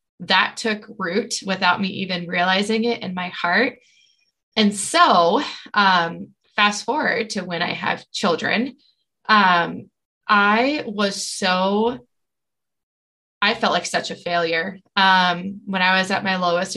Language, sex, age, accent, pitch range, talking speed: English, female, 20-39, American, 180-220 Hz, 135 wpm